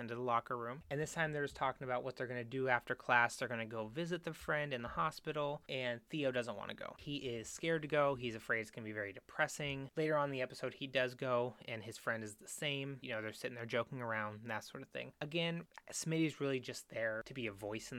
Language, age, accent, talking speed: English, 30-49, American, 275 wpm